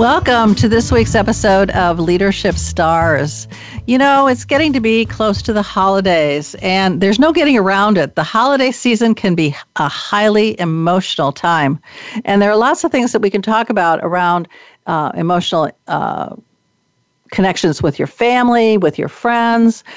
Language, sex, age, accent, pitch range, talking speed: English, female, 50-69, American, 185-235 Hz, 165 wpm